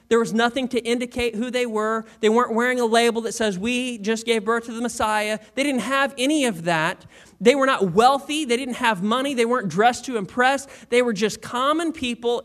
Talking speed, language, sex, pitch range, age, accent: 220 wpm, English, male, 175-245 Hz, 30-49, American